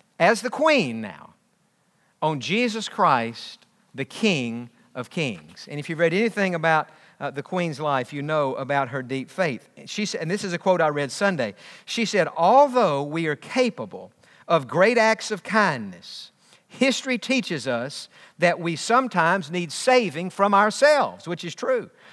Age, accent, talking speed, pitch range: 50-69, American, 165 wpm, 165-230 Hz